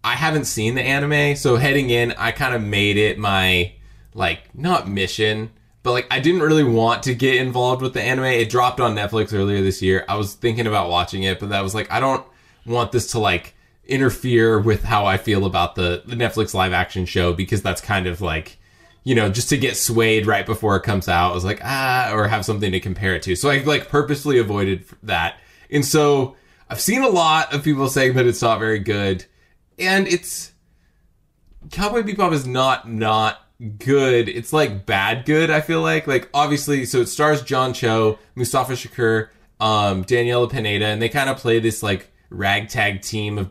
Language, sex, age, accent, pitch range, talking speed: English, male, 20-39, American, 100-130 Hz, 205 wpm